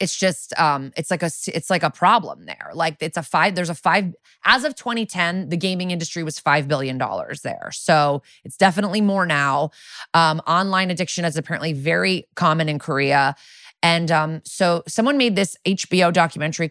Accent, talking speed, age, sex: American, 185 wpm, 20-39, female